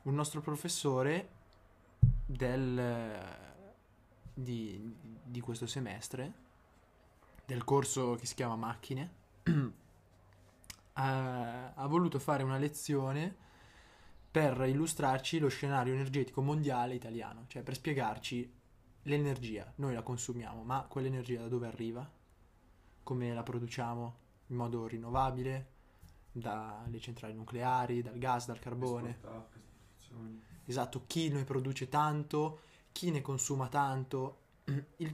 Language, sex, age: Italian, male, 20-39